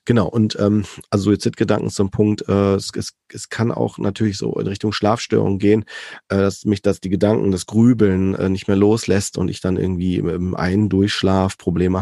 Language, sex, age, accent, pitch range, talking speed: German, male, 40-59, German, 95-105 Hz, 205 wpm